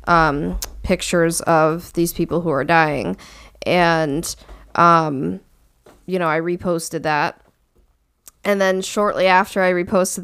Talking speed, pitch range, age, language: 125 wpm, 170-200 Hz, 10-29, English